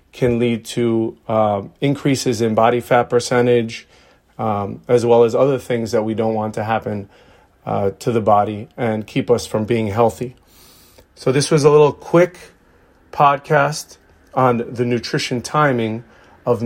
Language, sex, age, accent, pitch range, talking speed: English, male, 40-59, American, 110-130 Hz, 155 wpm